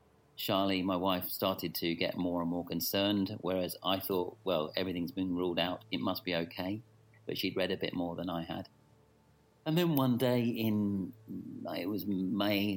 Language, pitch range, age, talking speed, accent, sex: English, 85-105 Hz, 40-59, 185 wpm, British, male